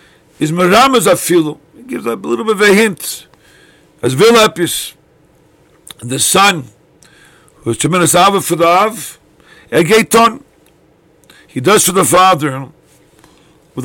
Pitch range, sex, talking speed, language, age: 140-185 Hz, male, 105 wpm, English, 50-69